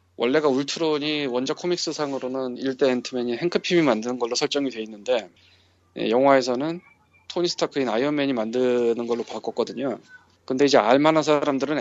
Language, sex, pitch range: Korean, male, 115-155 Hz